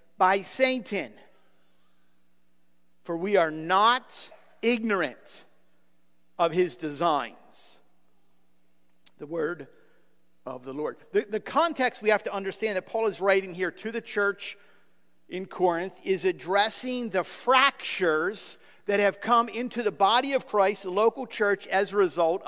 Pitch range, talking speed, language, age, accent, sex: 185-245 Hz, 135 wpm, English, 50-69, American, male